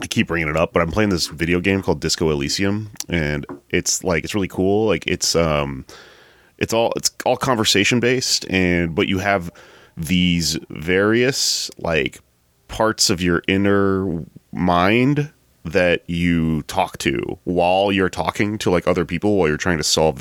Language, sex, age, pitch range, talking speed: English, male, 30-49, 80-100 Hz, 170 wpm